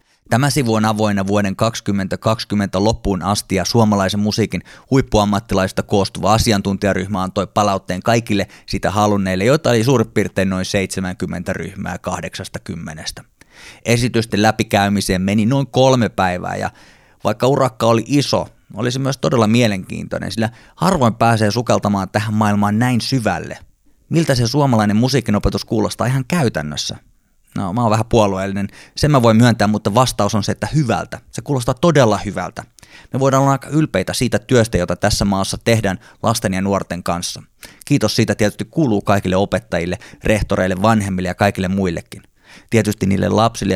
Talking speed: 145 wpm